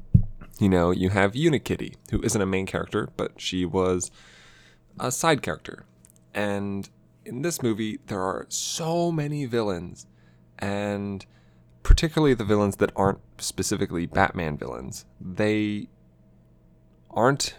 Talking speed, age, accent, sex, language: 125 wpm, 20-39, American, male, English